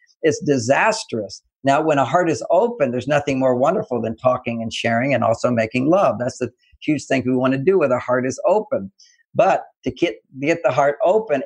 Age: 50-69